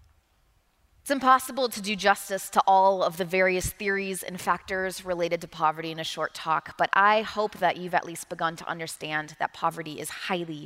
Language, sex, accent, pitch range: English, female, American, 165-195 Hz